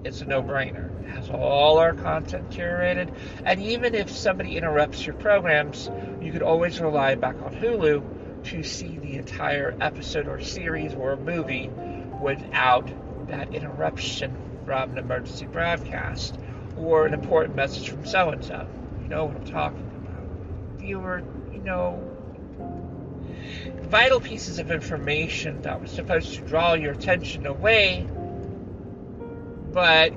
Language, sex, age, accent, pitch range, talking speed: English, male, 50-69, American, 95-150 Hz, 135 wpm